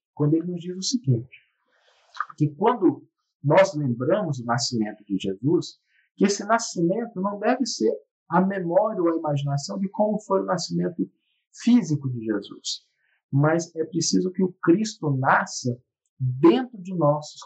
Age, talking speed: 50-69, 150 wpm